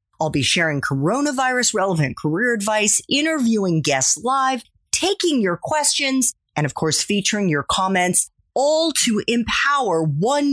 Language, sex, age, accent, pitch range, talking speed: English, female, 30-49, American, 160-270 Hz, 125 wpm